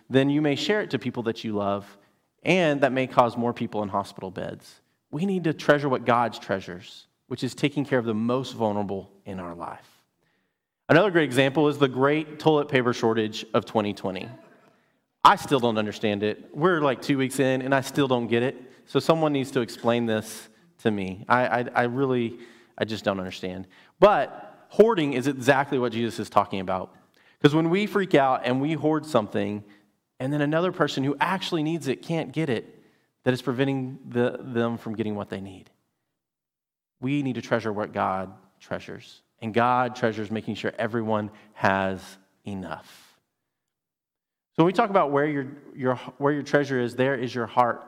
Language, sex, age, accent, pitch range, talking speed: English, male, 30-49, American, 110-145 Hz, 185 wpm